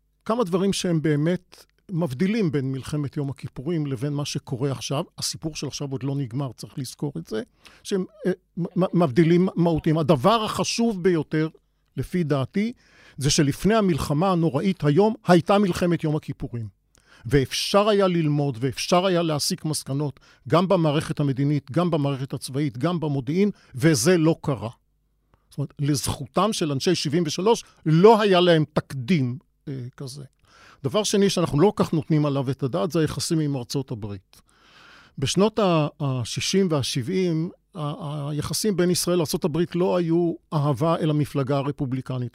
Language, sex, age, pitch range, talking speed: Hebrew, male, 50-69, 140-180 Hz, 140 wpm